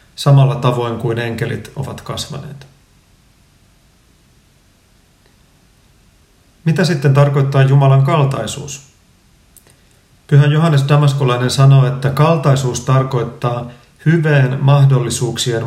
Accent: native